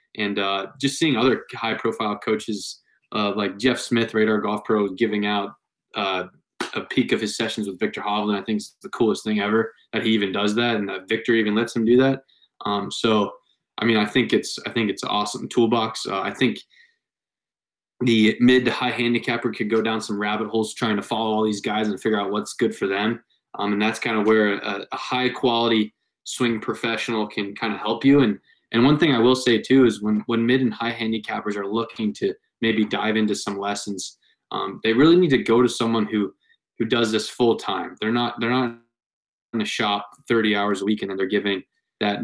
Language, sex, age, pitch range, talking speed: English, male, 20-39, 100-115 Hz, 220 wpm